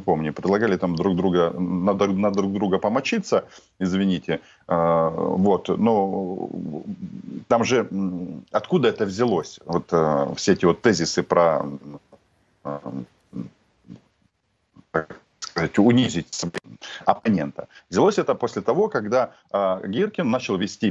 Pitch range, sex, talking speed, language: 85-105 Hz, male, 100 wpm, Russian